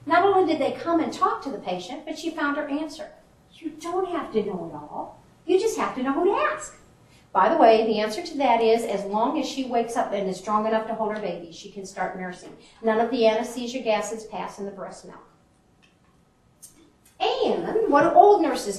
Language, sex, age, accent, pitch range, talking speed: English, female, 50-69, American, 200-270 Hz, 220 wpm